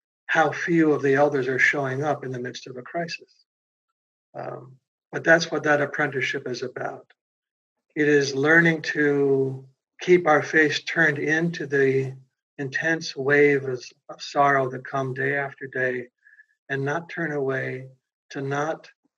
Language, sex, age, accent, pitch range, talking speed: English, male, 60-79, American, 135-170 Hz, 145 wpm